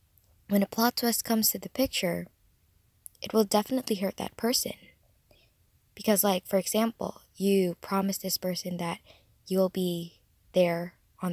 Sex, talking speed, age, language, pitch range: female, 145 wpm, 10-29, English, 170-205 Hz